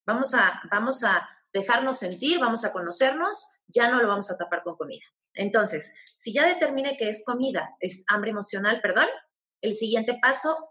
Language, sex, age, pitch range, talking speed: Spanish, female, 30-49, 185-250 Hz, 175 wpm